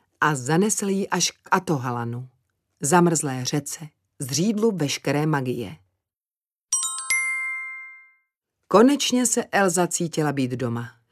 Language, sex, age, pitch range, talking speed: Czech, female, 40-59, 145-190 Hz, 95 wpm